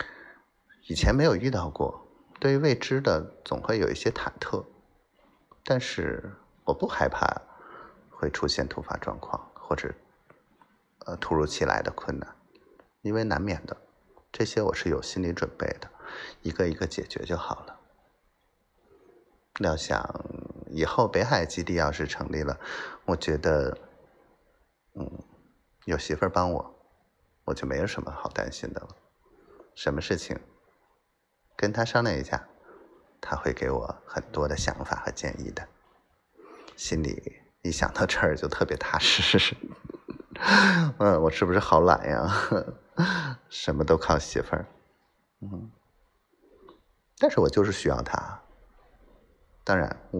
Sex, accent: male, native